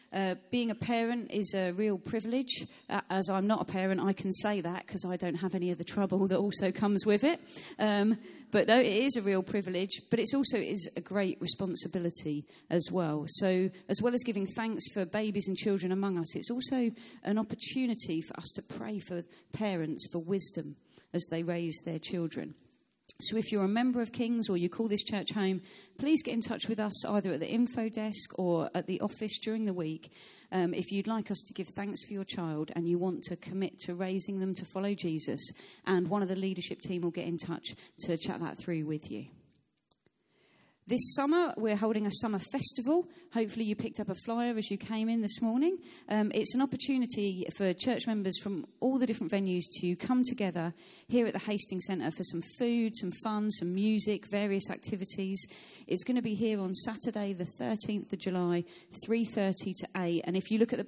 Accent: British